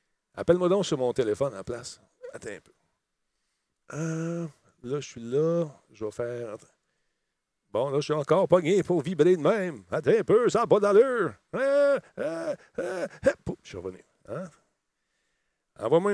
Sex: male